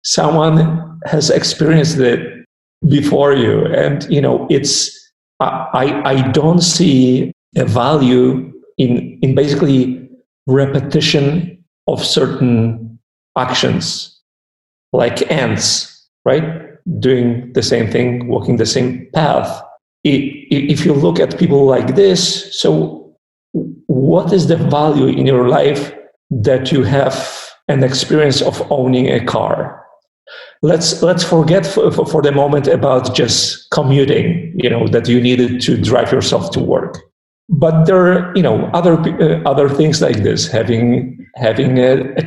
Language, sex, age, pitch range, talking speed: English, male, 50-69, 125-160 Hz, 135 wpm